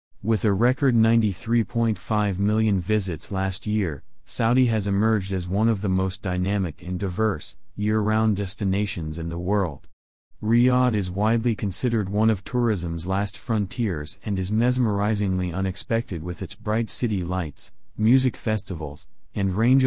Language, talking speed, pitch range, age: English, 140 wpm, 95-115 Hz, 30-49